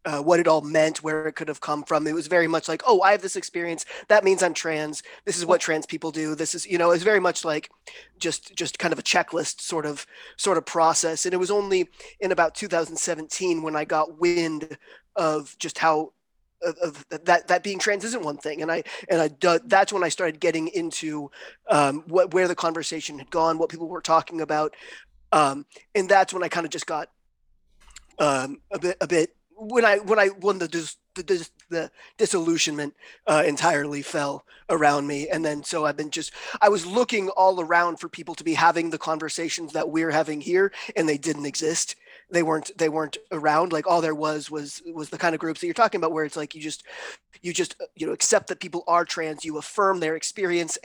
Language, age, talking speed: English, 20-39, 225 wpm